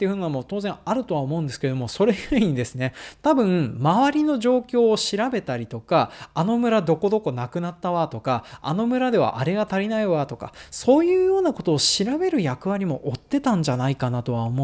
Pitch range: 135-215 Hz